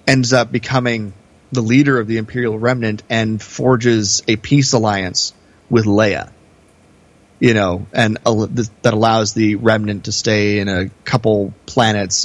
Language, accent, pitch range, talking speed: English, American, 100-125 Hz, 140 wpm